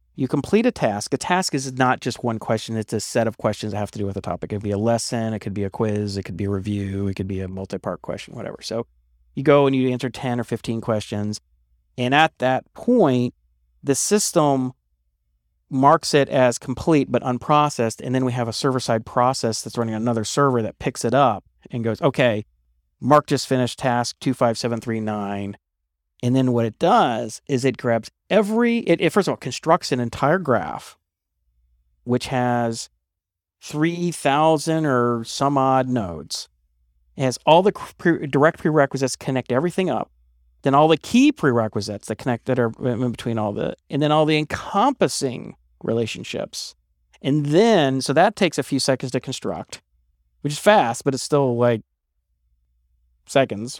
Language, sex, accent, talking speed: English, male, American, 185 wpm